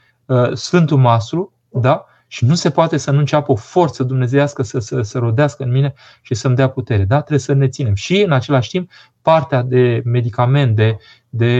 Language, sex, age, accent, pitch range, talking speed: Romanian, male, 20-39, native, 120-145 Hz, 195 wpm